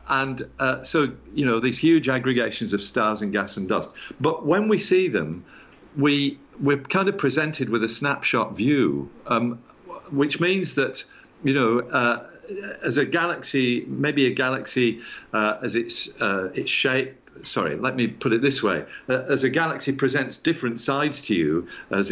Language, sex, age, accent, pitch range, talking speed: English, male, 50-69, British, 110-140 Hz, 175 wpm